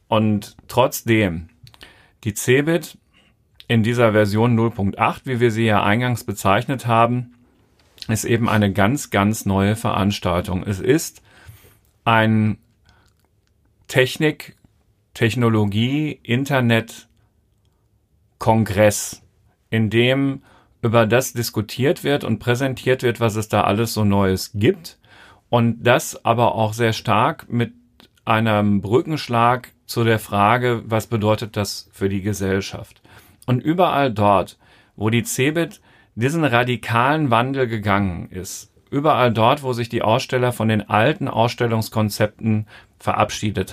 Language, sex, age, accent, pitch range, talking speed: German, male, 40-59, German, 105-120 Hz, 115 wpm